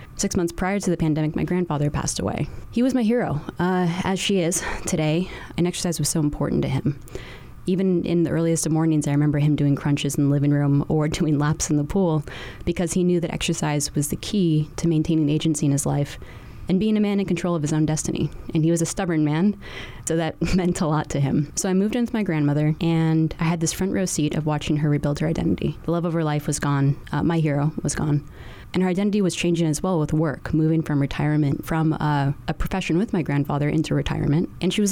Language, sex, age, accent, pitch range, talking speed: English, female, 20-39, American, 150-175 Hz, 240 wpm